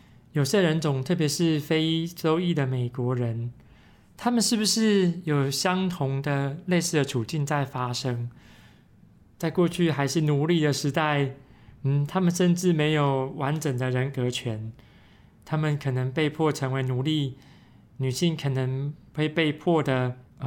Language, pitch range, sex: Chinese, 130-165 Hz, male